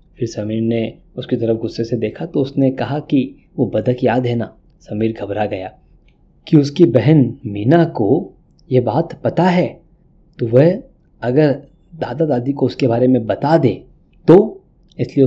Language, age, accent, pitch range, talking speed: Hindi, 20-39, native, 115-140 Hz, 165 wpm